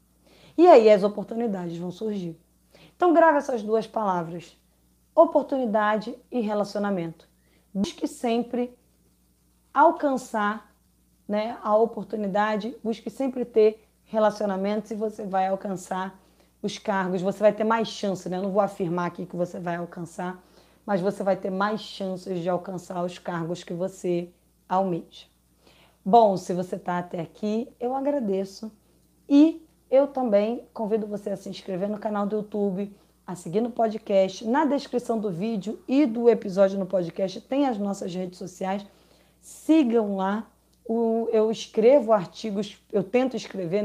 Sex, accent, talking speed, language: female, Brazilian, 140 wpm, Portuguese